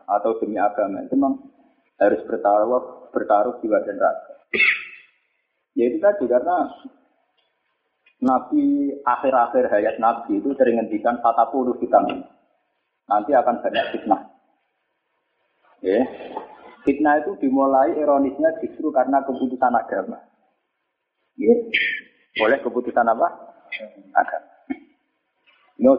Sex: male